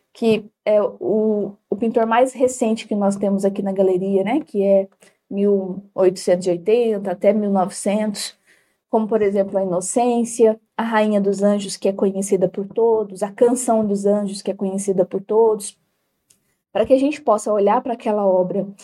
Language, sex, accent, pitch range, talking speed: Portuguese, female, Brazilian, 200-255 Hz, 160 wpm